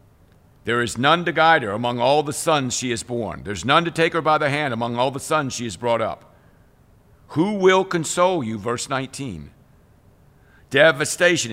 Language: English